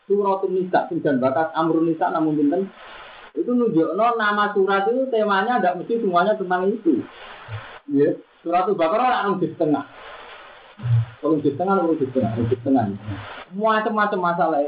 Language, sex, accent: Indonesian, male, native